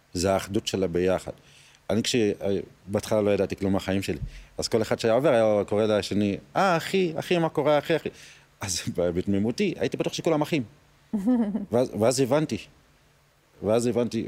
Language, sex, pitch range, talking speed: Hebrew, male, 90-110 Hz, 160 wpm